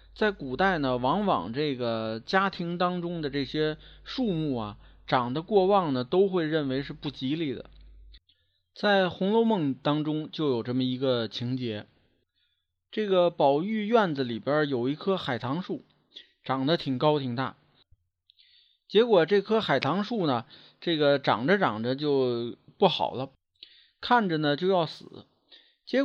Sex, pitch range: male, 115-180 Hz